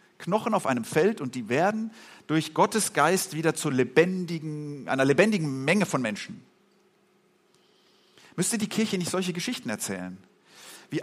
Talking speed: 140 wpm